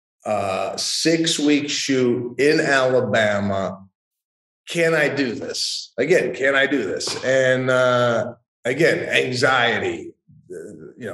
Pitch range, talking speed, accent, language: 105-165 Hz, 110 wpm, American, English